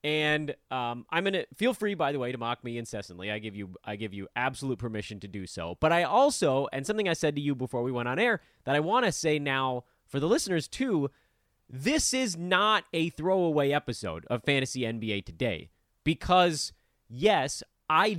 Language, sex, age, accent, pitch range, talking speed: English, male, 30-49, American, 120-185 Hz, 205 wpm